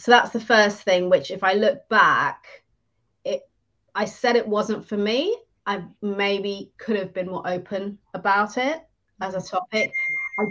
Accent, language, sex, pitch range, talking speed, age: British, English, female, 180-210 Hz, 170 wpm, 30-49